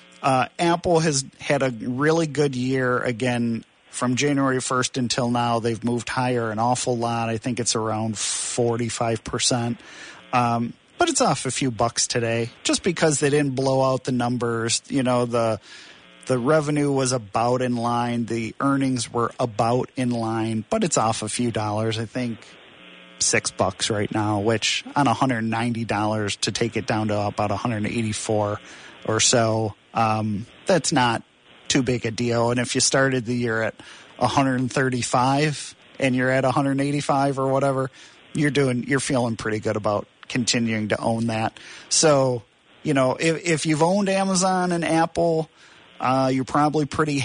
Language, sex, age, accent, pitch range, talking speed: English, male, 40-59, American, 115-135 Hz, 160 wpm